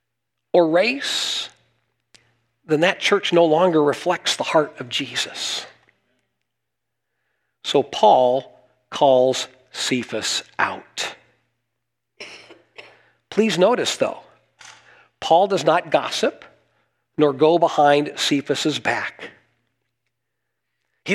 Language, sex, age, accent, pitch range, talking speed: English, male, 40-59, American, 125-195 Hz, 85 wpm